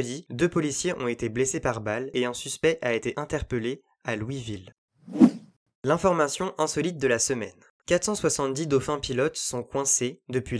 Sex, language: male, French